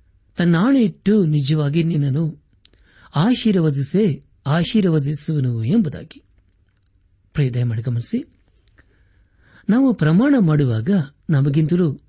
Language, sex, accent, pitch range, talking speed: Kannada, male, native, 100-160 Hz, 55 wpm